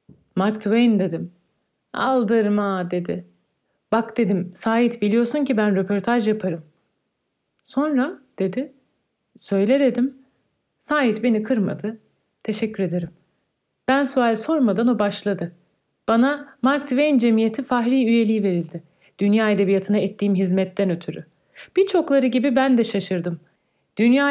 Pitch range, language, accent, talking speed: 200-260 Hz, Turkish, native, 110 wpm